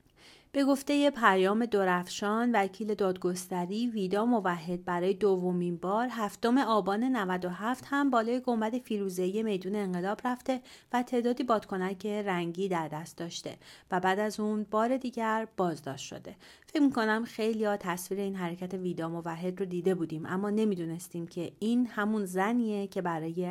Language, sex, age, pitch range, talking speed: Persian, female, 30-49, 180-220 Hz, 145 wpm